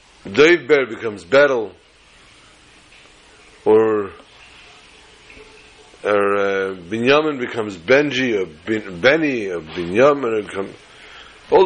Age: 50-69